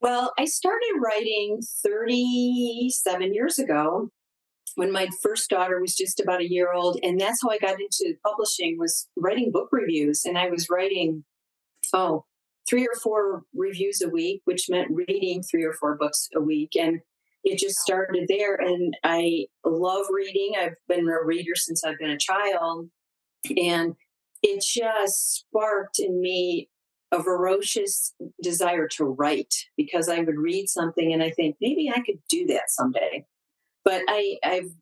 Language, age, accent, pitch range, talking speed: English, 40-59, American, 160-220 Hz, 160 wpm